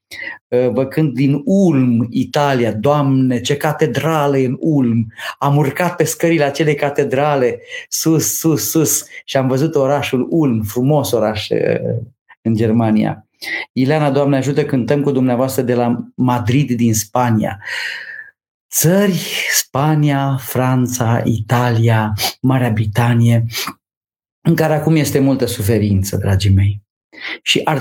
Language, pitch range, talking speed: Romanian, 120-145 Hz, 115 wpm